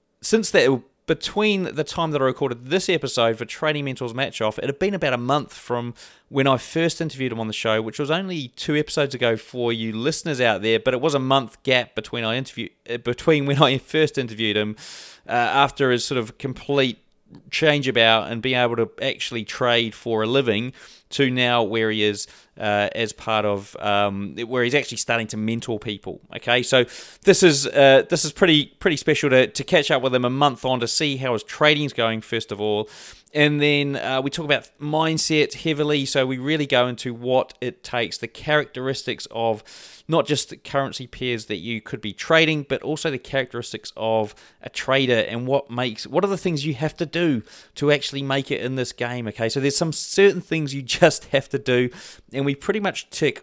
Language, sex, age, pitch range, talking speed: English, male, 30-49, 115-145 Hz, 215 wpm